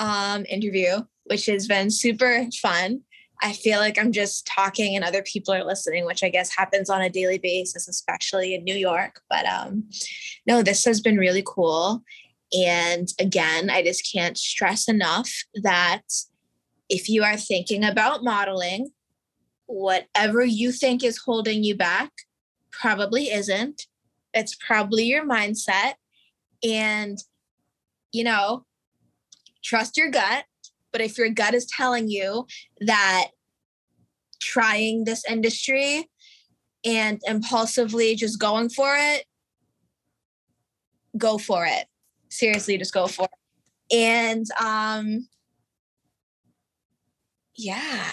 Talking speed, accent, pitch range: 125 wpm, American, 195-240 Hz